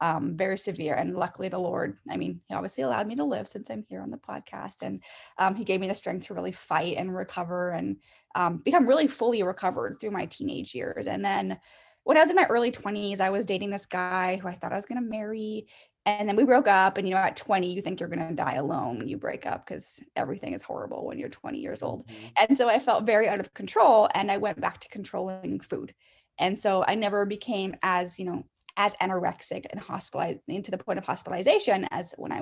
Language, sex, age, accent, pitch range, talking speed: English, female, 10-29, American, 180-215 Hz, 240 wpm